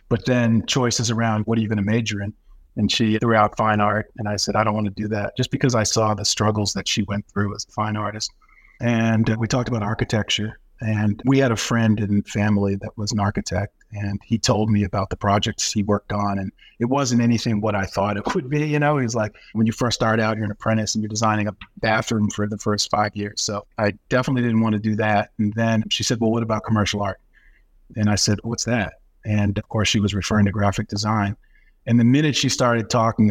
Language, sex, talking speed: English, male, 245 wpm